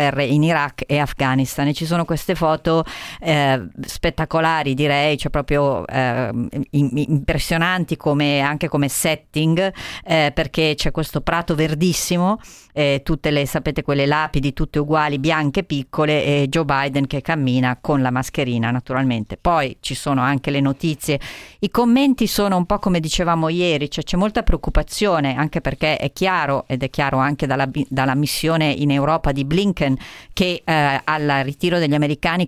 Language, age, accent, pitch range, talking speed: Italian, 40-59, native, 140-165 Hz, 150 wpm